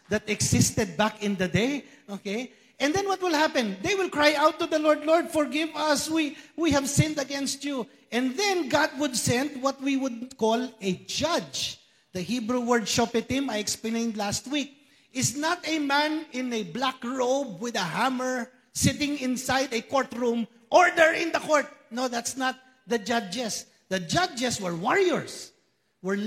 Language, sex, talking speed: English, male, 175 wpm